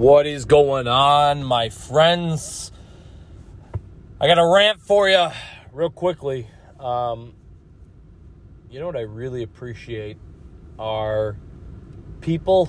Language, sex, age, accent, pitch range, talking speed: English, male, 30-49, American, 100-125 Hz, 110 wpm